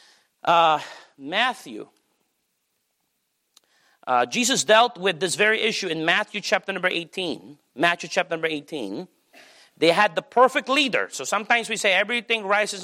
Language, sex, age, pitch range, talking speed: English, male, 40-59, 195-275 Hz, 135 wpm